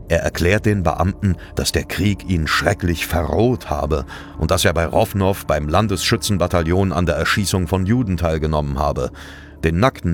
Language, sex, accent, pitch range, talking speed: German, male, German, 80-95 Hz, 160 wpm